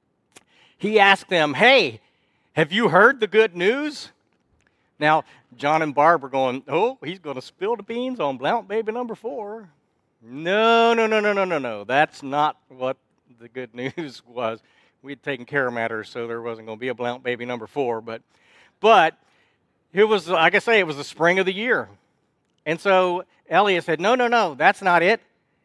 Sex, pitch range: male, 130-190 Hz